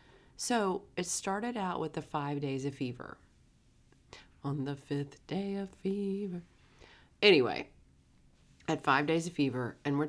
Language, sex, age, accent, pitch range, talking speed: English, female, 30-49, American, 120-150 Hz, 145 wpm